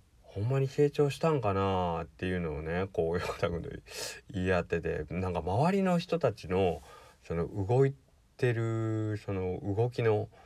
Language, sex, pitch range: Japanese, male, 80-105 Hz